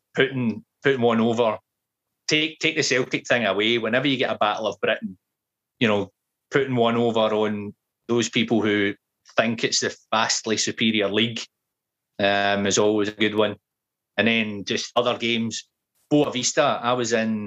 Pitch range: 105-120 Hz